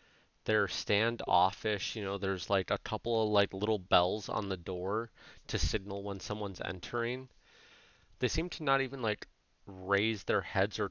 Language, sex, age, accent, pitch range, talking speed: English, male, 30-49, American, 95-125 Hz, 165 wpm